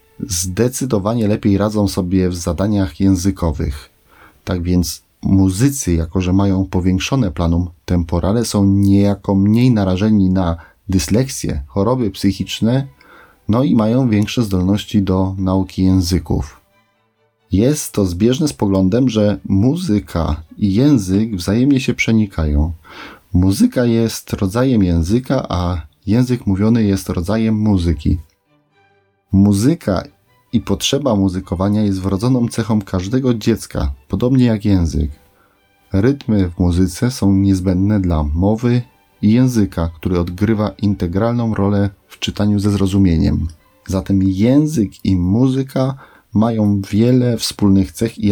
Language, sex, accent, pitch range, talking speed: Polish, male, native, 95-115 Hz, 115 wpm